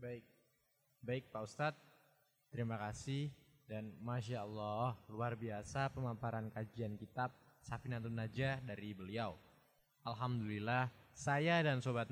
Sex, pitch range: male, 110-140 Hz